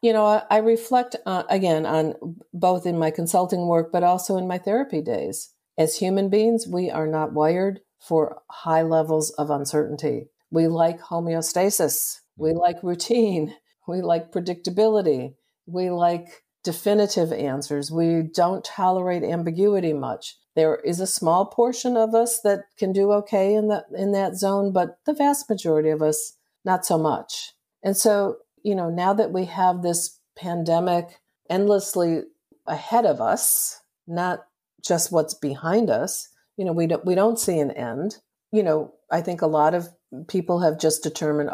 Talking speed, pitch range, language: 160 wpm, 155-195 Hz, English